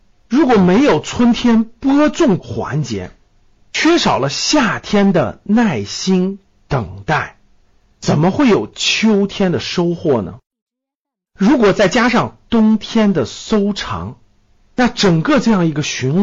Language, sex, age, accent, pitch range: Chinese, male, 50-69, native, 130-210 Hz